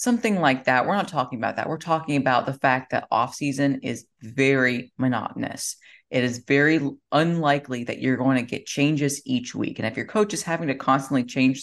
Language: English